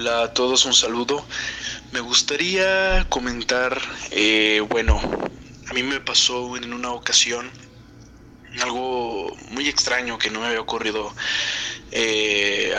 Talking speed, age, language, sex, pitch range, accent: 120 wpm, 20-39, Spanish, male, 110-125 Hz, Mexican